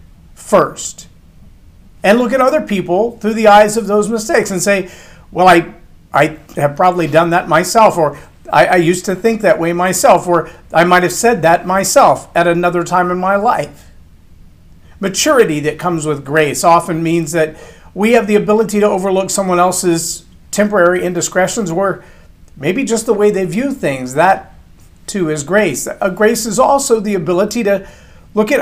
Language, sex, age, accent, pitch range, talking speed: English, male, 50-69, American, 165-205 Hz, 175 wpm